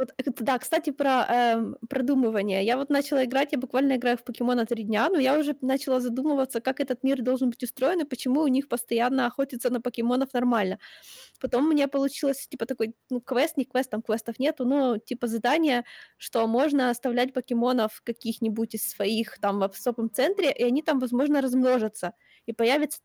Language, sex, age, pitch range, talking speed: Ukrainian, female, 20-39, 235-295 Hz, 185 wpm